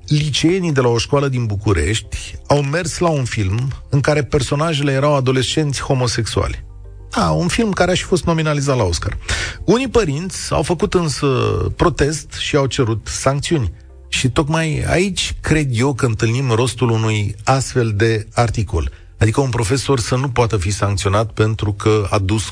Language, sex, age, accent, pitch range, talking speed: Romanian, male, 40-59, native, 100-145 Hz, 165 wpm